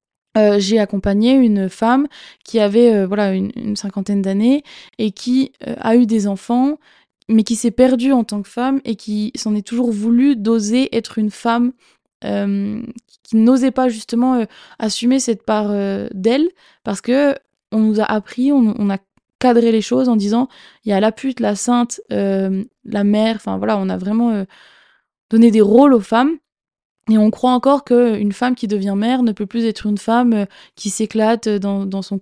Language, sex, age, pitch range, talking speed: French, female, 20-39, 205-245 Hz, 190 wpm